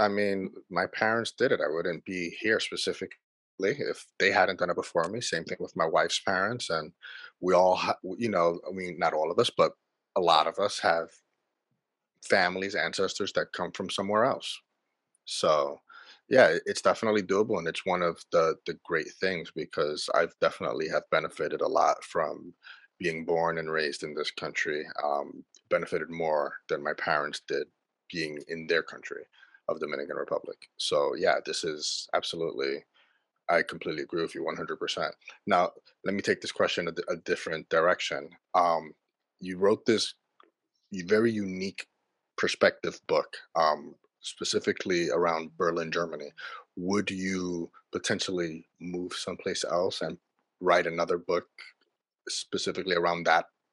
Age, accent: 30-49, American